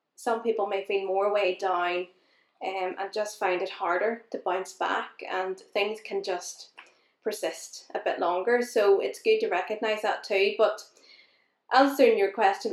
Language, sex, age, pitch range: English, female, 20-39, 185-225 Hz